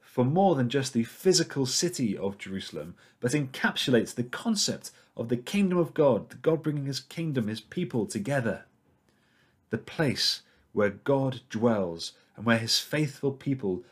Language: English